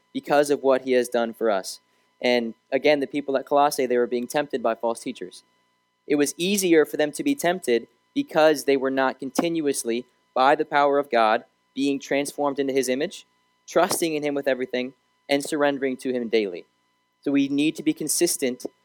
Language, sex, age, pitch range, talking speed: English, male, 20-39, 125-150 Hz, 190 wpm